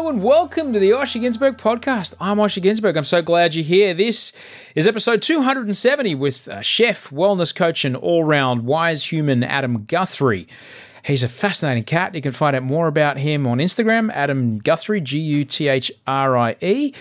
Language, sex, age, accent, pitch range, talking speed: English, male, 30-49, Australian, 120-195 Hz, 160 wpm